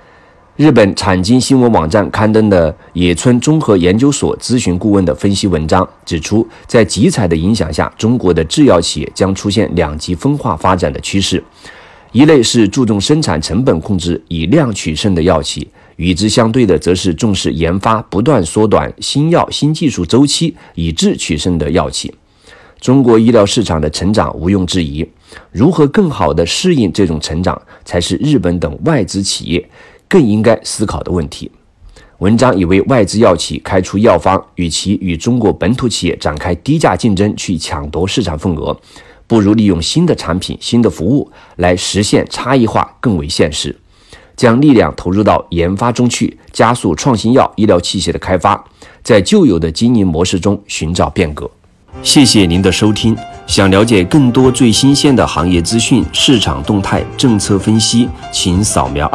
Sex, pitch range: male, 90-115 Hz